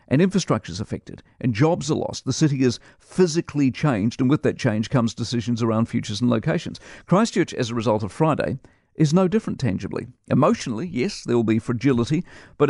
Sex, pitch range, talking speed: male, 115-150 Hz, 190 wpm